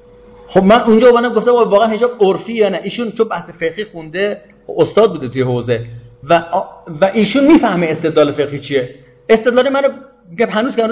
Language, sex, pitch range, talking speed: Persian, male, 155-210 Hz, 175 wpm